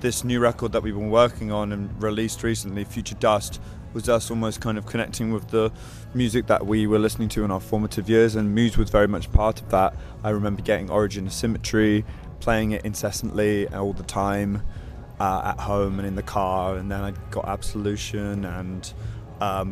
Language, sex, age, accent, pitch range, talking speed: Finnish, male, 20-39, British, 105-115 Hz, 200 wpm